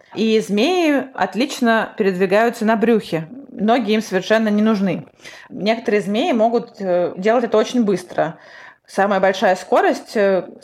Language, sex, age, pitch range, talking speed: Russian, female, 20-39, 195-230 Hz, 120 wpm